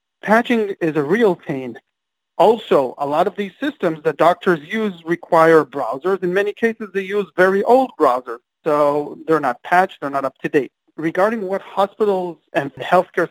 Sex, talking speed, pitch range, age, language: male, 170 wpm, 155-195 Hz, 40-59, English